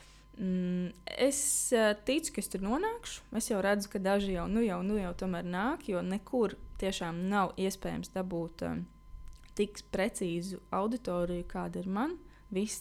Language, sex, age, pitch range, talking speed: English, female, 20-39, 175-210 Hz, 145 wpm